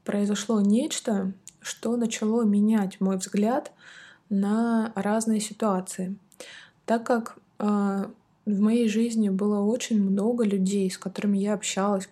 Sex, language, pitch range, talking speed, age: female, Russian, 185-220 Hz, 120 wpm, 20-39